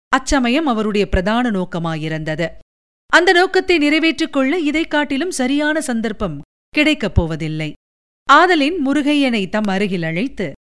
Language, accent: Tamil, native